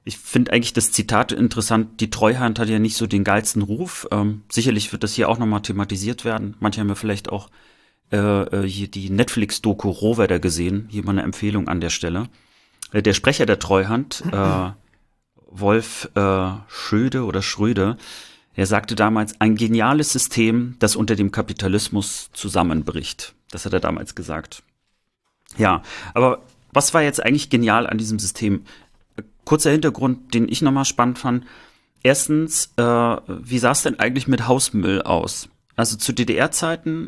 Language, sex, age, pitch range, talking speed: German, male, 30-49, 100-125 Hz, 160 wpm